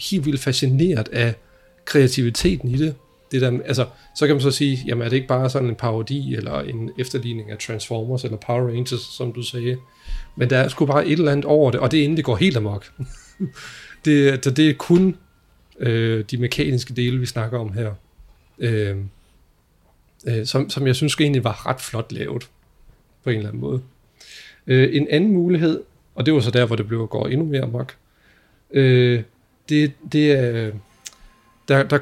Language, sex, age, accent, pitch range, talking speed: Danish, male, 40-59, native, 115-145 Hz, 190 wpm